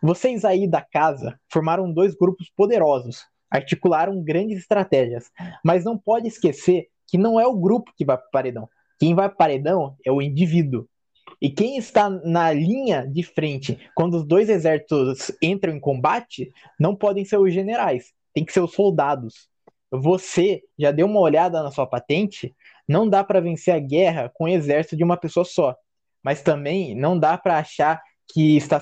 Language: Portuguese